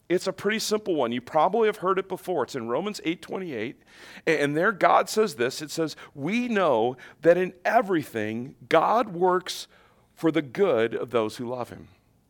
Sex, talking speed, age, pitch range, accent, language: male, 180 wpm, 40-59, 115-180 Hz, American, English